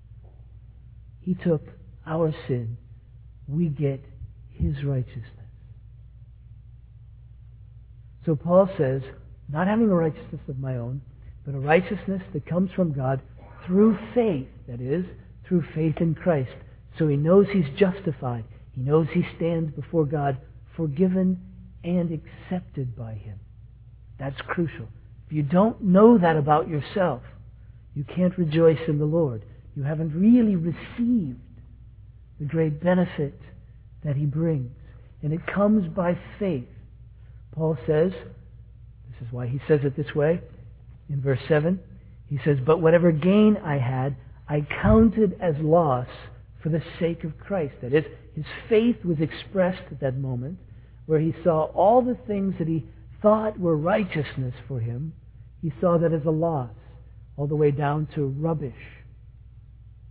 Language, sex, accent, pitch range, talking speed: English, male, American, 115-165 Hz, 140 wpm